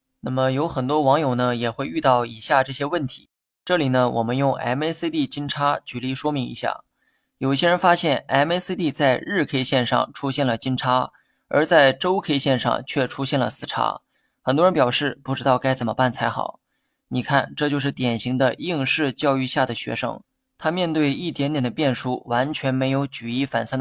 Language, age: Chinese, 20-39